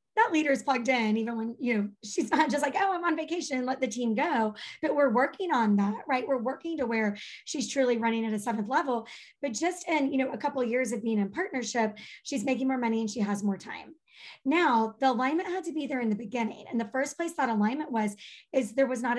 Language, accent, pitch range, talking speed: English, American, 225-280 Hz, 255 wpm